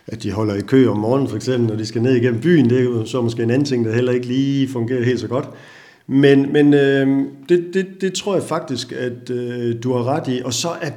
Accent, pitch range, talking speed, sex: native, 115-140 Hz, 270 wpm, male